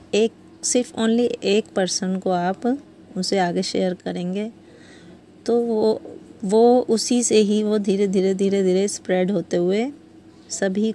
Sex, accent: female, native